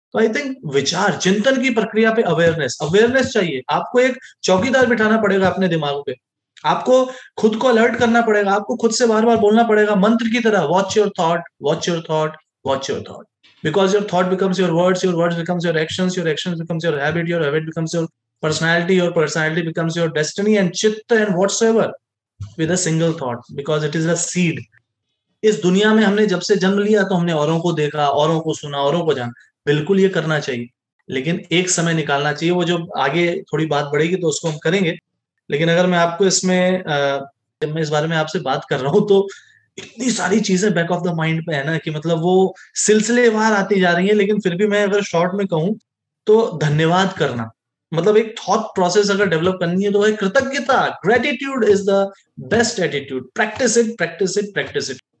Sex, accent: male, Indian